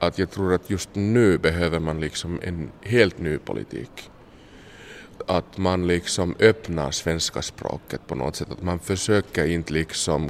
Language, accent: Swedish, Finnish